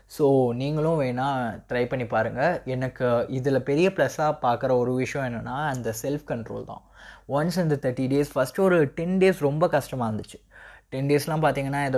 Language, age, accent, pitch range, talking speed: Tamil, 20-39, native, 115-140 Hz, 160 wpm